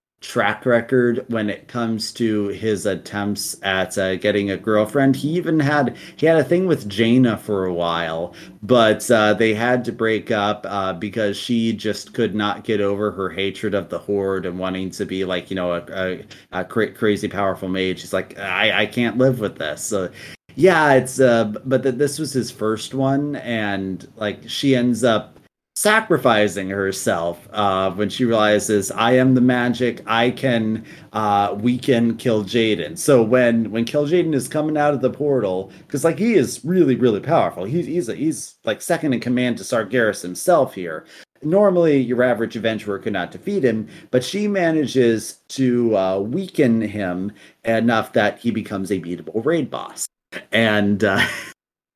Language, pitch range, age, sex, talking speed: English, 100-130 Hz, 30-49, male, 180 wpm